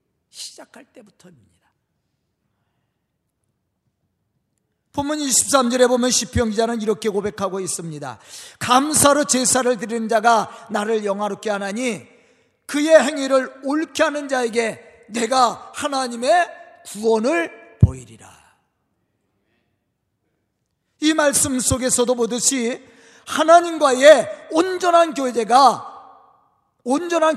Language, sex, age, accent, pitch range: Korean, male, 40-59, native, 220-310 Hz